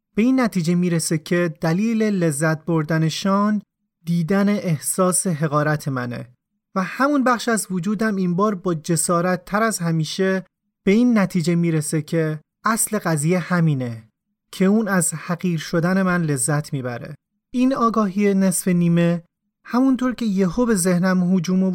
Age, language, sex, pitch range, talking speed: 30-49, Persian, male, 165-205 Hz, 145 wpm